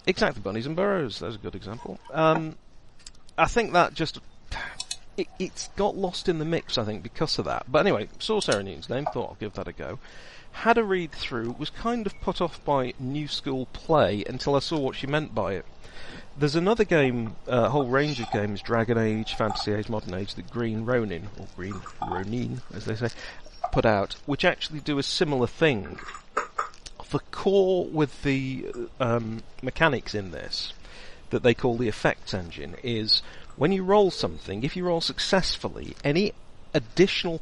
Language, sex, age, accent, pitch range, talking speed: English, male, 40-59, British, 110-155 Hz, 180 wpm